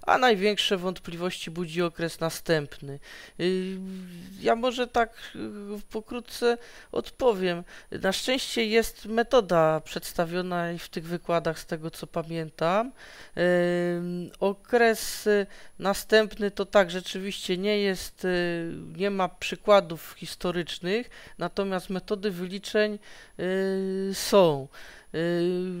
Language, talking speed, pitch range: Polish, 90 wpm, 160-195 Hz